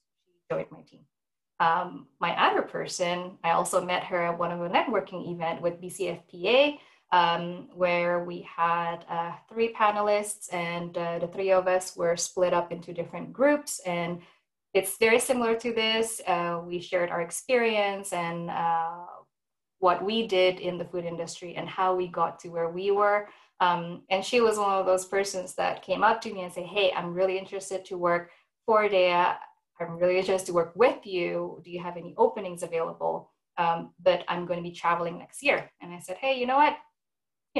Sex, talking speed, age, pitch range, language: female, 190 wpm, 20-39, 175-210 Hz, English